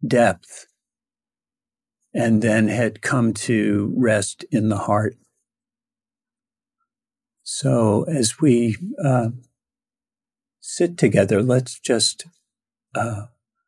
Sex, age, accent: male, 50-69, American